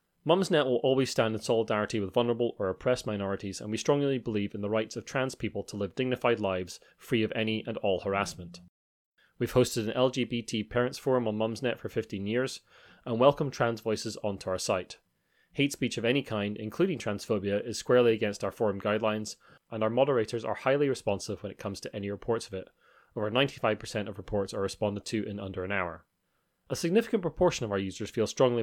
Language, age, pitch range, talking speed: English, 30-49, 100-125 Hz, 200 wpm